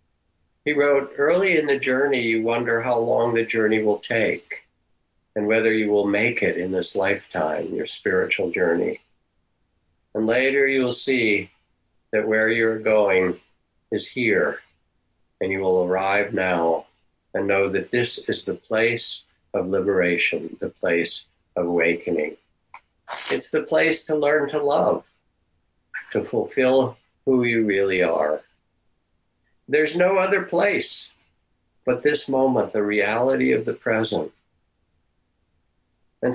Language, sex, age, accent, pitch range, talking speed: English, male, 50-69, American, 85-130 Hz, 130 wpm